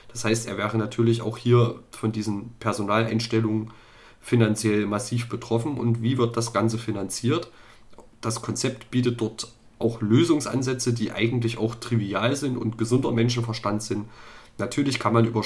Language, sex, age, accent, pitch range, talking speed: German, male, 30-49, German, 110-120 Hz, 150 wpm